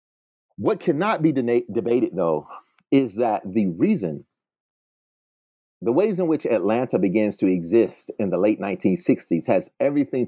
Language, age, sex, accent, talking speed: English, 40-59, male, American, 135 wpm